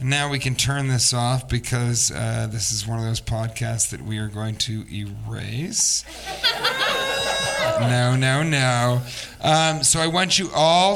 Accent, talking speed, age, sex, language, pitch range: American, 160 wpm, 40-59, male, English, 125-155 Hz